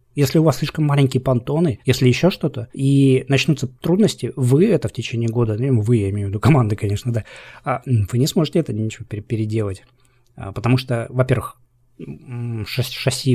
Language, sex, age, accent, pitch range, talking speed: Russian, male, 20-39, native, 115-135 Hz, 155 wpm